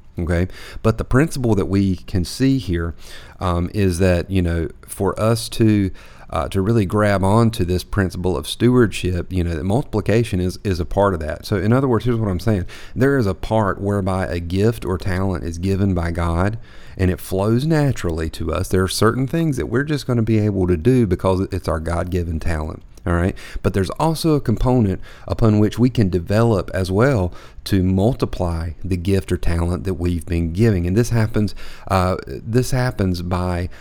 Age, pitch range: 40-59, 90-110 Hz